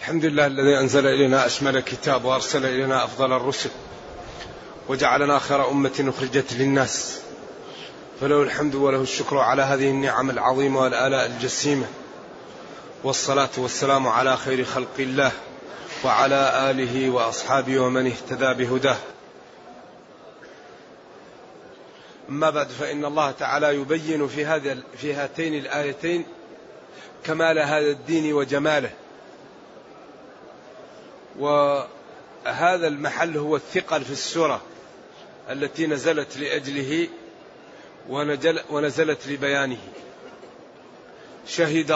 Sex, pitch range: male, 135-160 Hz